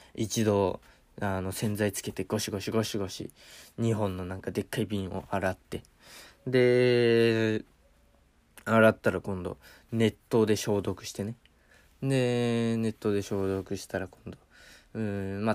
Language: Japanese